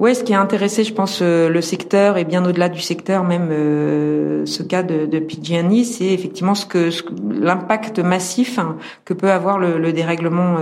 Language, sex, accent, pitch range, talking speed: French, female, French, 155-180 Hz, 205 wpm